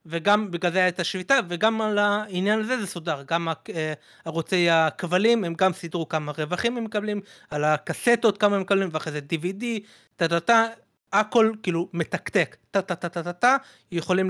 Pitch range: 170-215 Hz